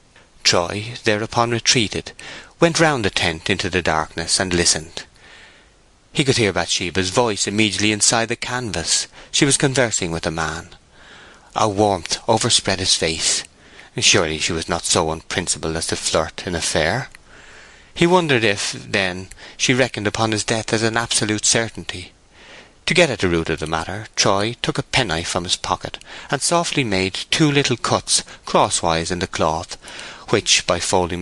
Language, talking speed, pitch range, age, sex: English, 165 wpm, 85-120 Hz, 30-49, male